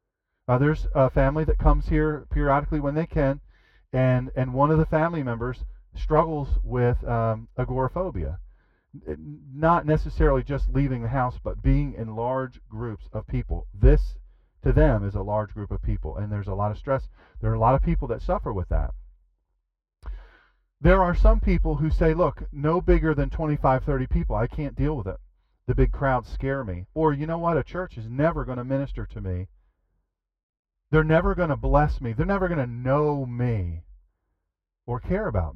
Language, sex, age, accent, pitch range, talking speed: English, male, 40-59, American, 95-145 Hz, 185 wpm